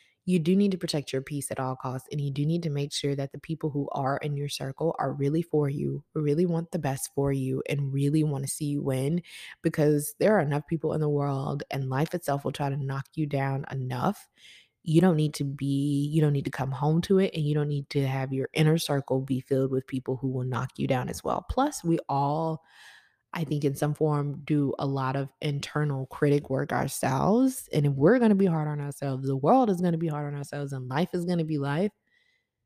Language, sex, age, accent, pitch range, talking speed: English, female, 20-39, American, 140-165 Hz, 245 wpm